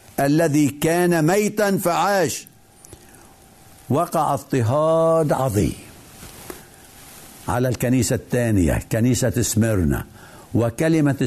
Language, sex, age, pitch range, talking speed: Arabic, male, 70-89, 115-155 Hz, 70 wpm